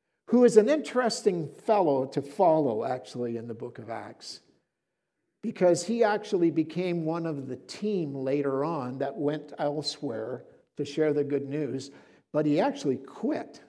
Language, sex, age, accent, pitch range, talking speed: English, male, 60-79, American, 125-170 Hz, 155 wpm